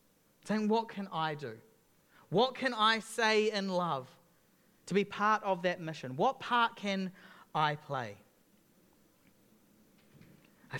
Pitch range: 155-225 Hz